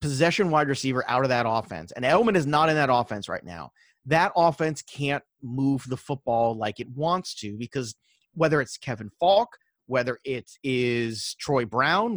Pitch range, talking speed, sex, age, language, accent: 125-165 Hz, 180 wpm, male, 30-49, English, American